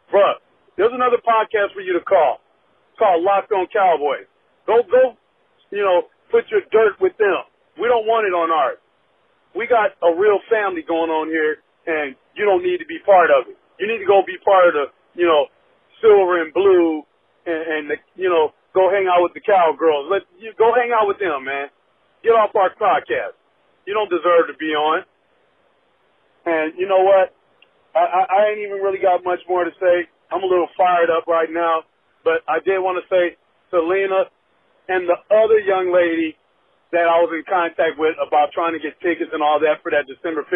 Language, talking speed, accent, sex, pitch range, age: English, 205 wpm, American, male, 160-205 Hz, 40-59